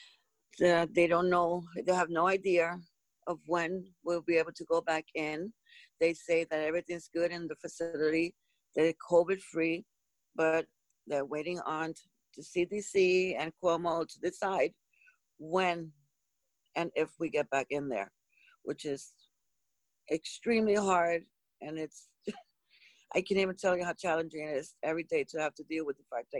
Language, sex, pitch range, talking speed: English, female, 165-225 Hz, 160 wpm